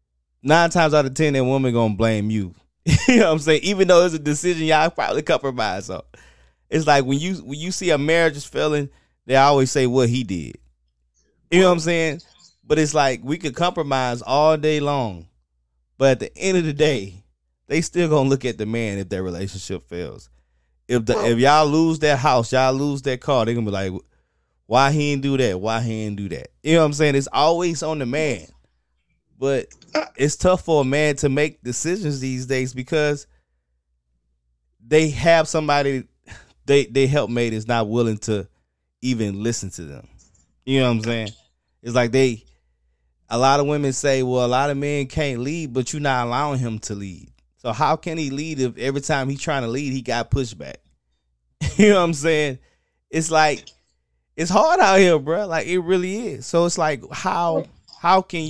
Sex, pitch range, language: male, 100-155 Hz, English